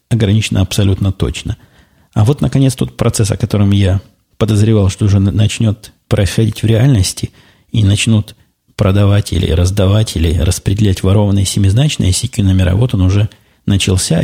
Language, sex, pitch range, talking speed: Russian, male, 95-115 Hz, 140 wpm